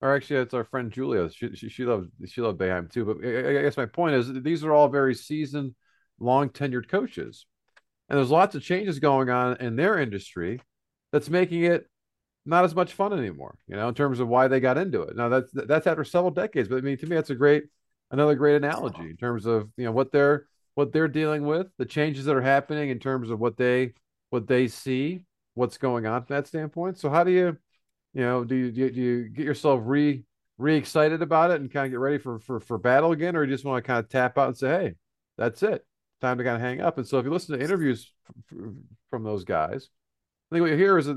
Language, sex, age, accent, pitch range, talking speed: English, male, 40-59, American, 125-155 Hz, 245 wpm